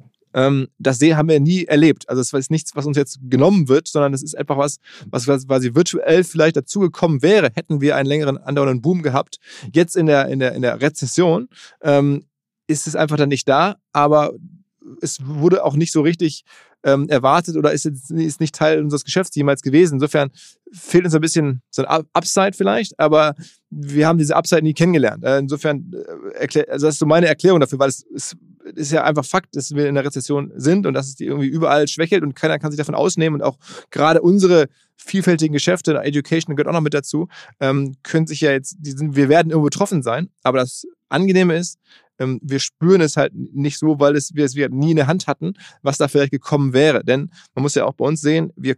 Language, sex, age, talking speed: German, male, 20-39, 215 wpm